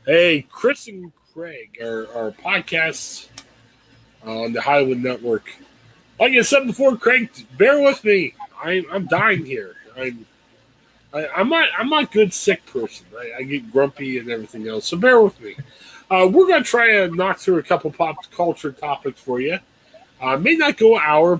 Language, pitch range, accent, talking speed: English, 140-220 Hz, American, 180 wpm